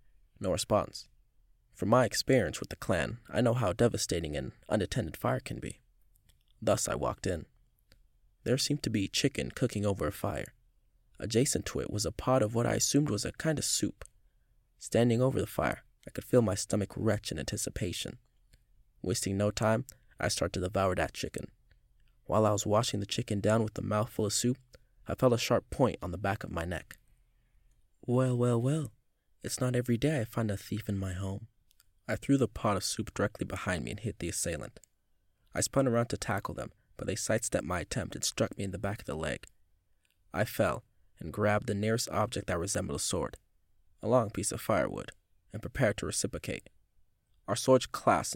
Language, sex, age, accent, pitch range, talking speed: English, male, 20-39, American, 95-115 Hz, 195 wpm